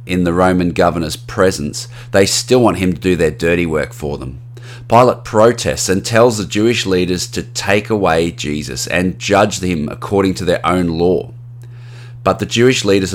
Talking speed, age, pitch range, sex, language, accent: 180 wpm, 30-49, 90-120 Hz, male, English, Australian